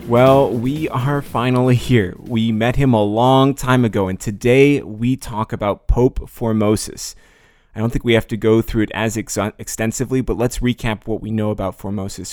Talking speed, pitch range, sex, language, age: 185 wpm, 105-125 Hz, male, English, 20-39